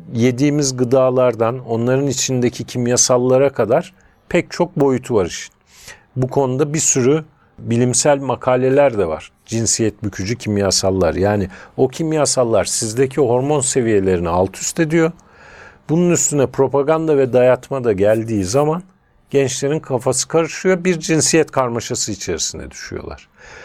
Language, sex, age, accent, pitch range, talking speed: Turkish, male, 50-69, native, 125-165 Hz, 120 wpm